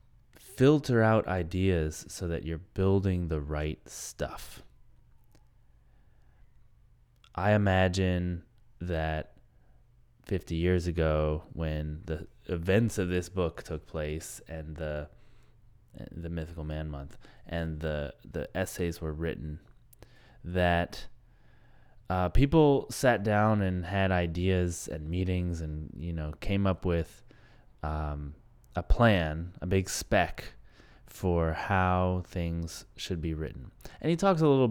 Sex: male